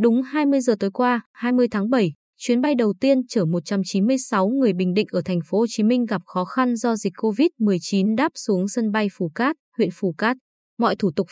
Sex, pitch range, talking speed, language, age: female, 195-250 Hz, 215 wpm, Vietnamese, 20-39